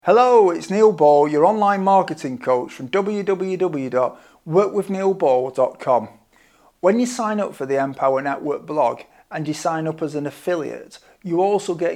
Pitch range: 135-180 Hz